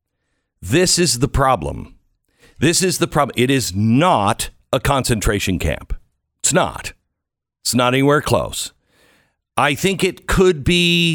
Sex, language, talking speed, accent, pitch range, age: male, English, 135 wpm, American, 105-170 Hz, 60-79